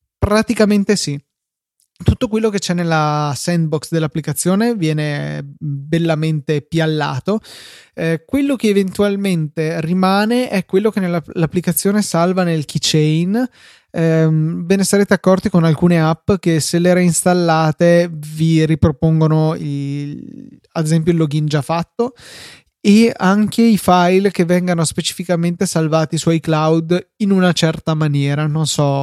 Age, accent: 20-39, native